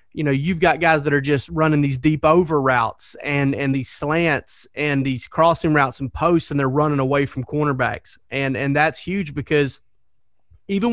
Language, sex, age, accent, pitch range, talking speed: English, male, 30-49, American, 135-160 Hz, 190 wpm